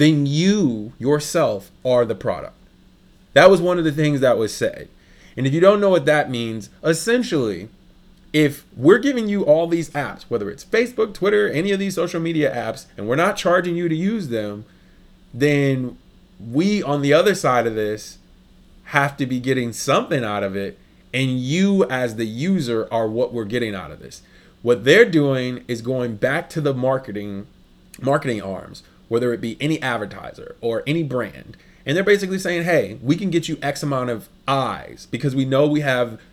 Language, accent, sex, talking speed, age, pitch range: English, American, male, 190 wpm, 20-39, 115-170 Hz